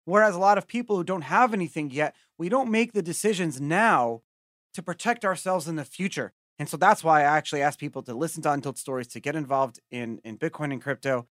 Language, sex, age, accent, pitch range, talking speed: English, male, 30-49, American, 130-170 Hz, 225 wpm